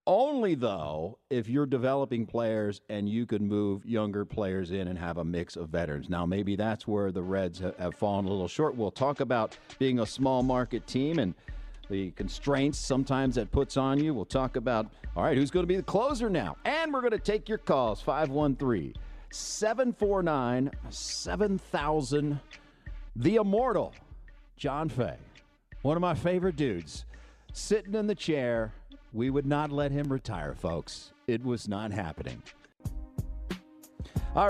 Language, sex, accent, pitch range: English, male, American, 95-145 Hz